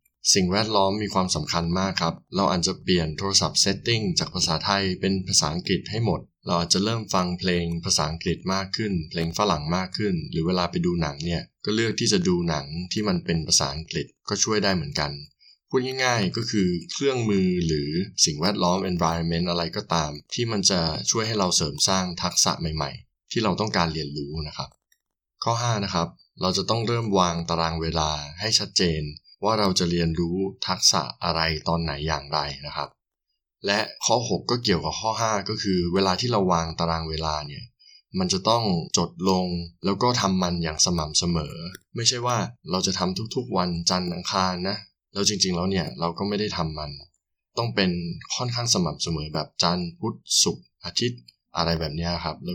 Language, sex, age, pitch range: Thai, male, 20-39, 80-100 Hz